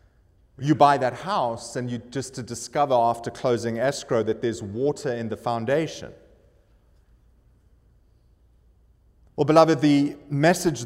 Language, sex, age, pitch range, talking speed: English, male, 30-49, 115-150 Hz, 120 wpm